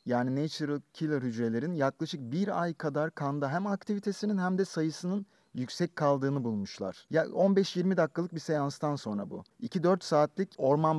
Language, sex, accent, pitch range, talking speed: Turkish, male, native, 135-170 Hz, 145 wpm